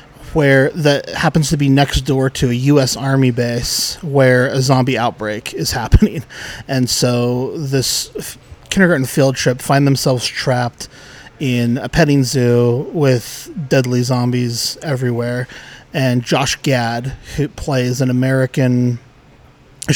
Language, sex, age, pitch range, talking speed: English, male, 20-39, 125-145 Hz, 130 wpm